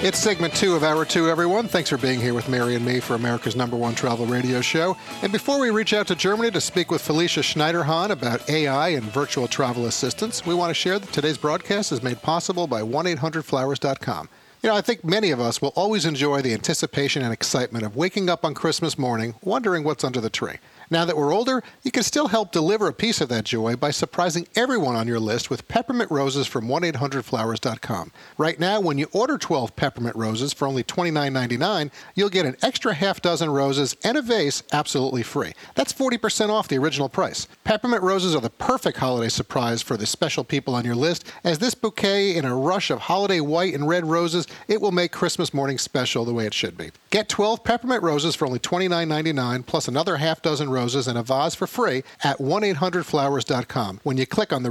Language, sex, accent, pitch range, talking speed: English, male, American, 130-185 Hz, 210 wpm